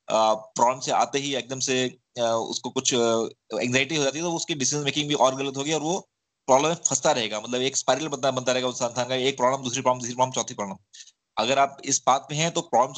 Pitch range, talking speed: 125-155 Hz, 230 wpm